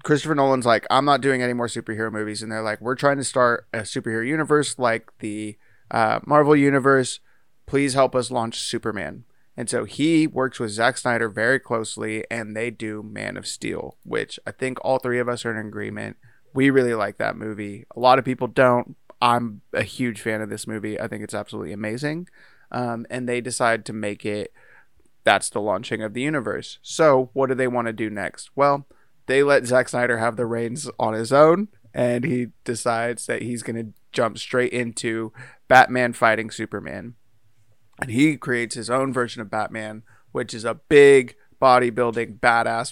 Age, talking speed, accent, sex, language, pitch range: 20-39, 190 wpm, American, male, English, 115-130 Hz